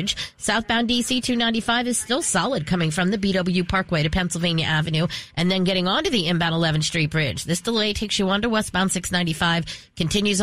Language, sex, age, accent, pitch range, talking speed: English, female, 40-59, American, 170-230 Hz, 185 wpm